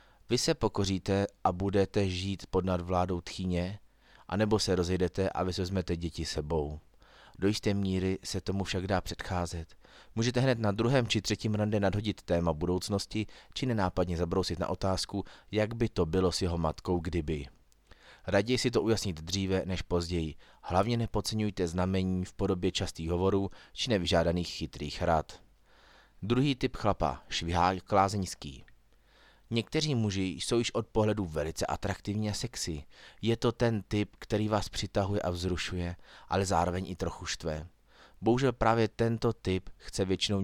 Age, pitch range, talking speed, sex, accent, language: 30-49, 90-105 Hz, 150 wpm, male, native, Czech